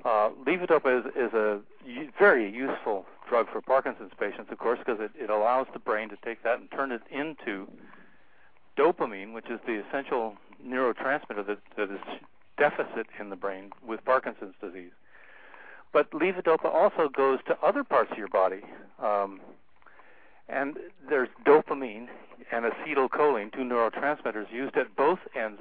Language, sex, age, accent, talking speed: English, male, 60-79, American, 150 wpm